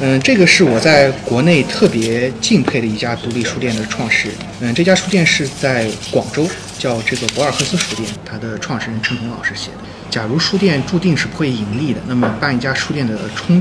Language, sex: Chinese, male